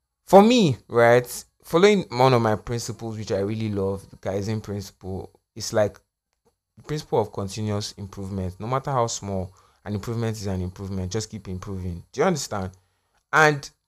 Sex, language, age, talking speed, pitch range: male, English, 20-39, 165 wpm, 105-140 Hz